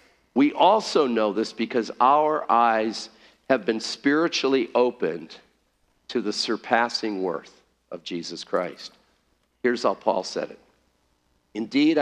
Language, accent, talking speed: English, American, 120 wpm